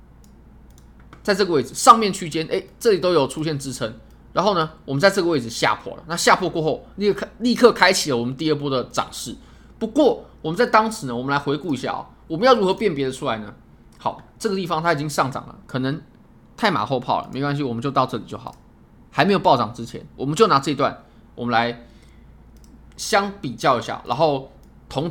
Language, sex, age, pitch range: Chinese, male, 20-39, 130-195 Hz